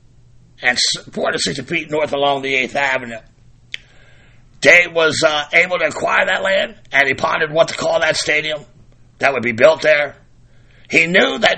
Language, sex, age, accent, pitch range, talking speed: English, male, 50-69, American, 130-160 Hz, 175 wpm